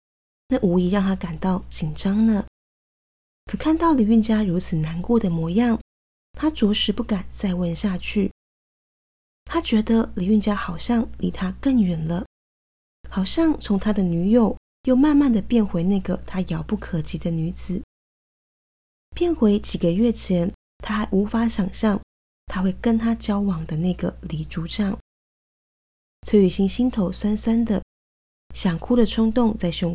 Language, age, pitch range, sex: Chinese, 20-39, 175-225 Hz, female